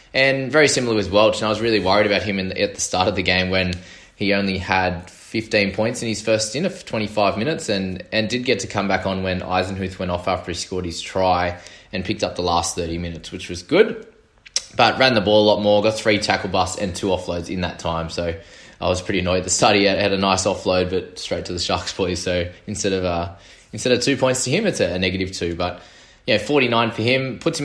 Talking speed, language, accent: 255 wpm, English, Australian